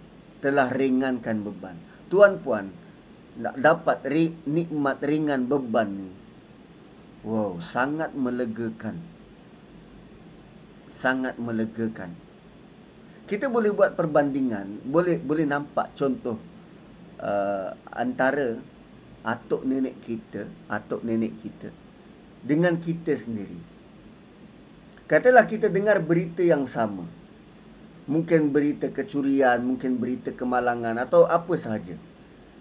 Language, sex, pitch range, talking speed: Malay, male, 125-195 Hz, 90 wpm